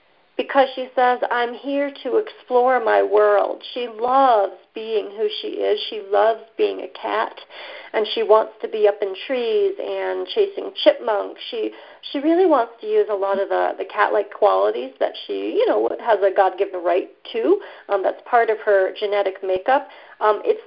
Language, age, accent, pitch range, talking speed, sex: English, 40-59, American, 200-320 Hz, 180 wpm, female